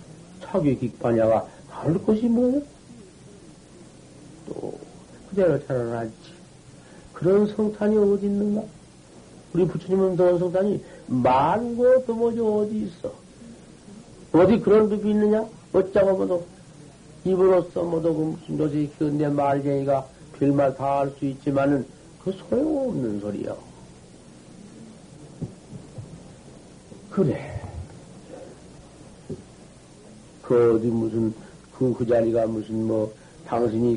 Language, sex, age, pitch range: Korean, male, 60-79, 130-185 Hz